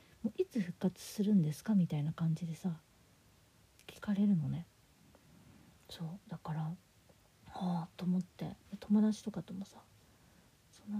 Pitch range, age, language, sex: 175-225 Hz, 40-59, Japanese, female